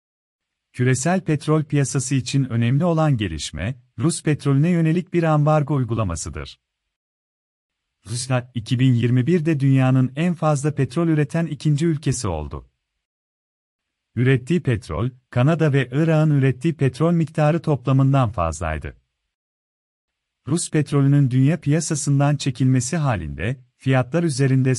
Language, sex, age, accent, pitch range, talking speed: Turkish, male, 40-59, native, 120-155 Hz, 100 wpm